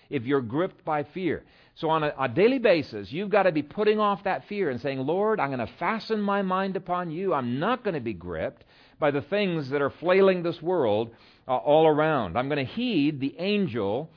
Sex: male